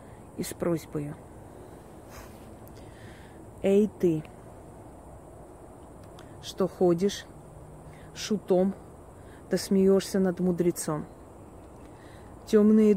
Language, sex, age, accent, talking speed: Russian, female, 30-49, native, 60 wpm